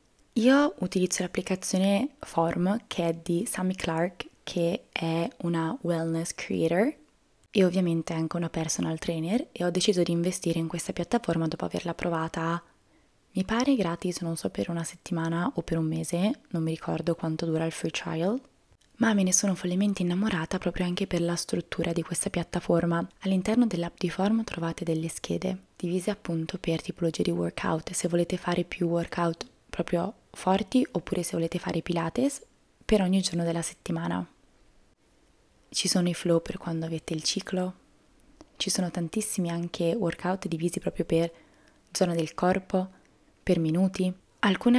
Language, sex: Italian, female